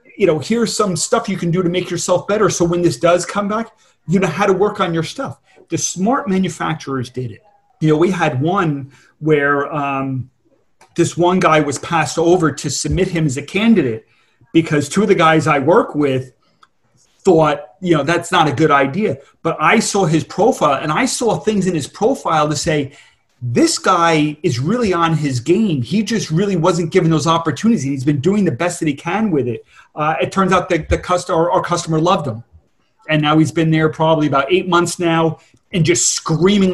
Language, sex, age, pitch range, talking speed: English, male, 30-49, 145-190 Hz, 210 wpm